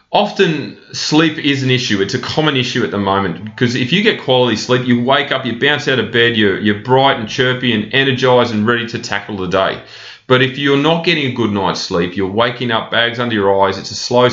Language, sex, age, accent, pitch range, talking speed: English, male, 30-49, Australian, 100-125 Hz, 245 wpm